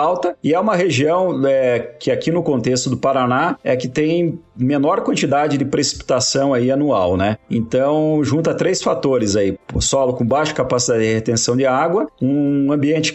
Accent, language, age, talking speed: Brazilian, Portuguese, 40-59, 170 wpm